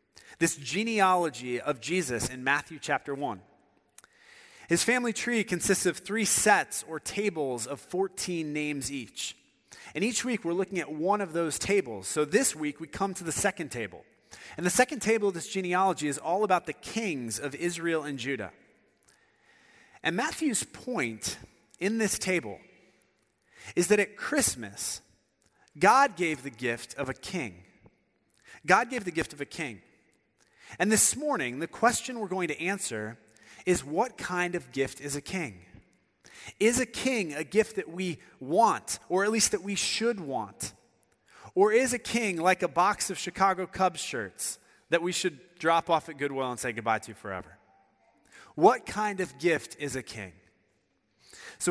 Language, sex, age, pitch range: English, male, 30-49, 140-200 Hz